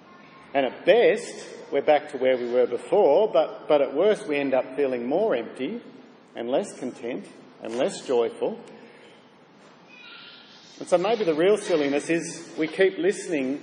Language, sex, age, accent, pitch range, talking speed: English, male, 50-69, Australian, 140-205 Hz, 160 wpm